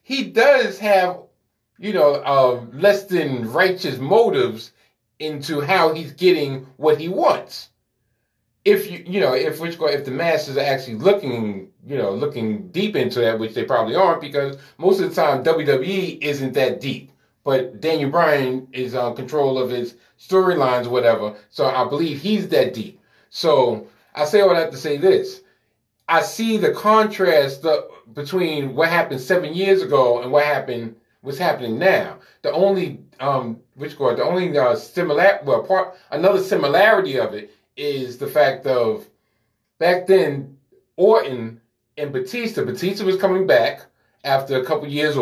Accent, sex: American, male